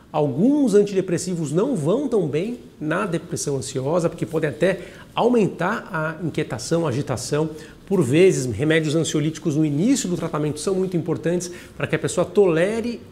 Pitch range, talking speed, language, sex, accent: 145-180 Hz, 145 wpm, Portuguese, male, Brazilian